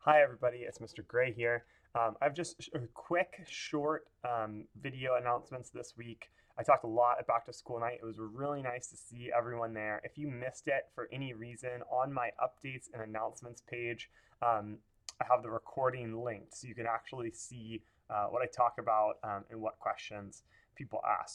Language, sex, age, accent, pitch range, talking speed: English, male, 30-49, American, 110-130 Hz, 195 wpm